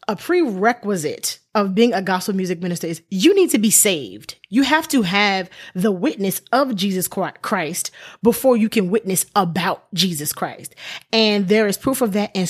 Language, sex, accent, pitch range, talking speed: English, female, American, 185-255 Hz, 180 wpm